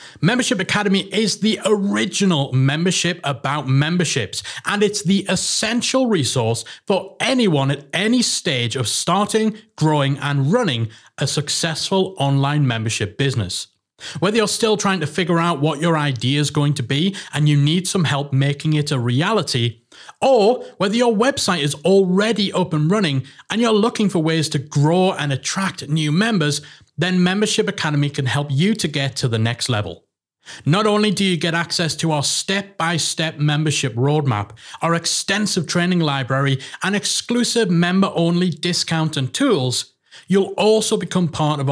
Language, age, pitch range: English, 30-49, 140-195 Hz